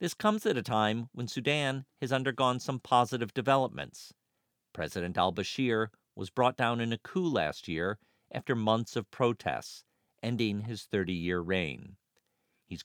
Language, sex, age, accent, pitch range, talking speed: English, male, 50-69, American, 95-125 Hz, 145 wpm